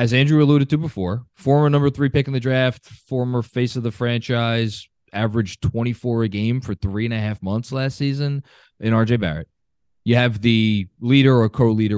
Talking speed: 190 wpm